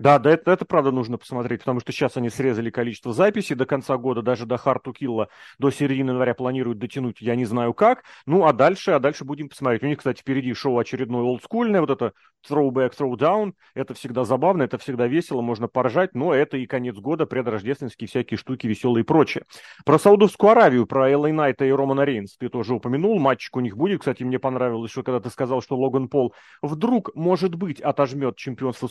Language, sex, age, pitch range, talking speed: Russian, male, 30-49, 125-160 Hz, 205 wpm